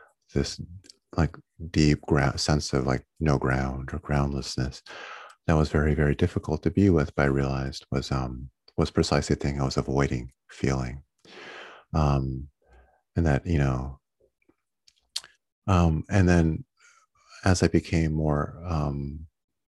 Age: 30-49